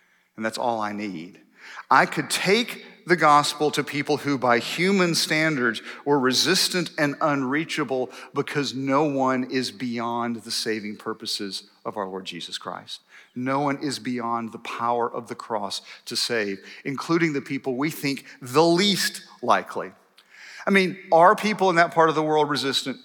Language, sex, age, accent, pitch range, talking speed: English, male, 50-69, American, 130-175 Hz, 165 wpm